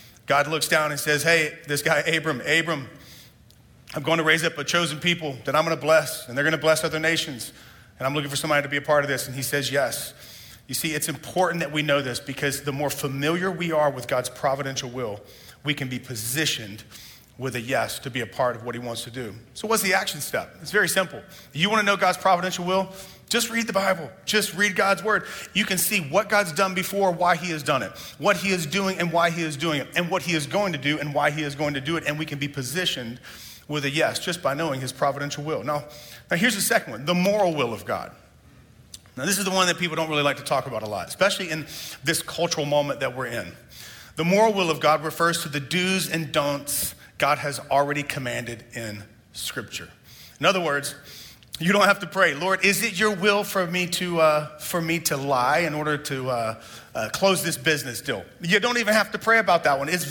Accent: American